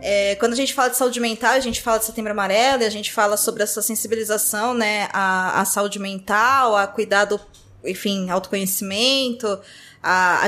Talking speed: 180 wpm